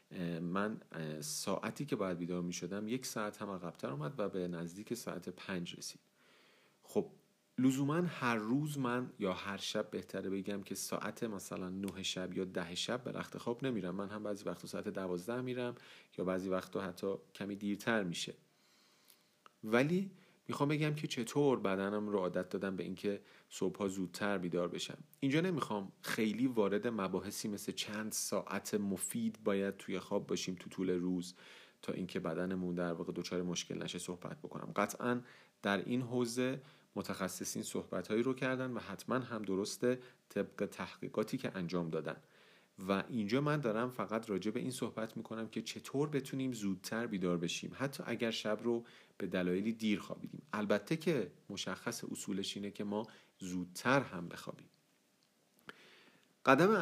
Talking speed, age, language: 155 wpm, 40-59, Persian